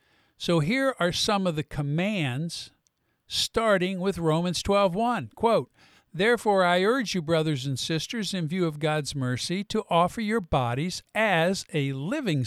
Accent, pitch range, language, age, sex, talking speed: American, 145-215 Hz, English, 50-69, male, 150 wpm